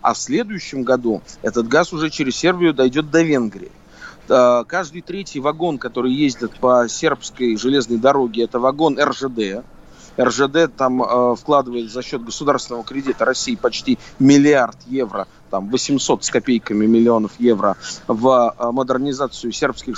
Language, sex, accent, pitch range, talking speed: Russian, male, native, 115-145 Hz, 130 wpm